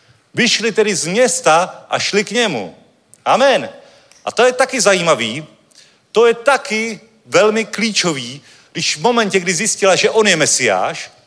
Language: Czech